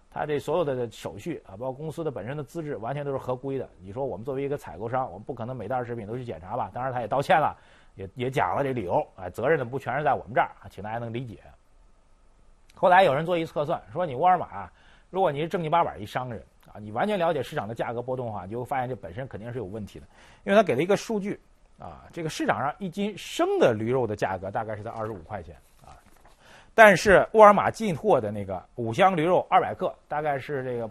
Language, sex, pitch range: Chinese, male, 105-165 Hz